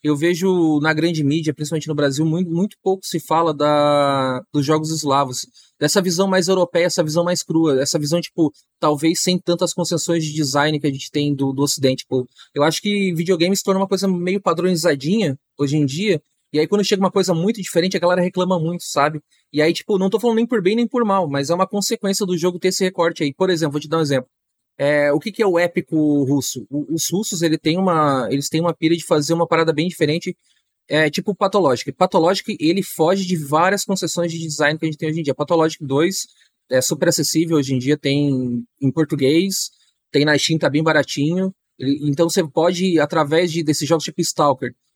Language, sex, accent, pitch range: Portuguese, male, Brazilian, 145-180 Hz